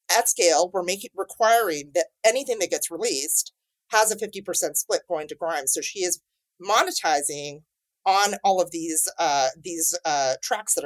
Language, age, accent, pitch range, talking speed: English, 30-49, American, 170-250 Hz, 170 wpm